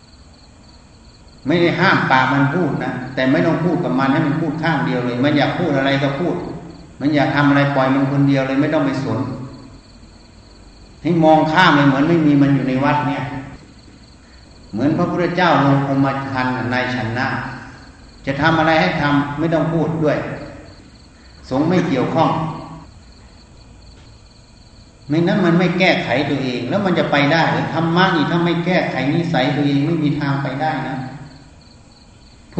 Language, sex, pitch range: Thai, male, 130-165 Hz